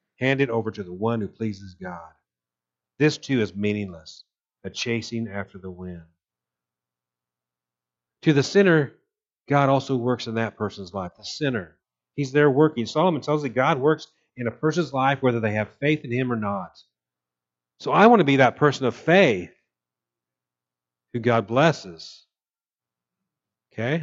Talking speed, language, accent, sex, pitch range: 160 wpm, English, American, male, 90-145 Hz